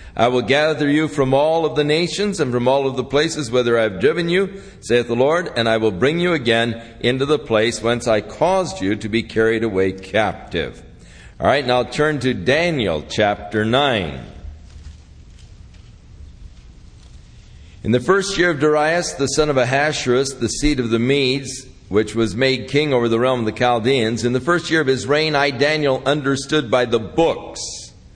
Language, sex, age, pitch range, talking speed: English, male, 50-69, 100-140 Hz, 185 wpm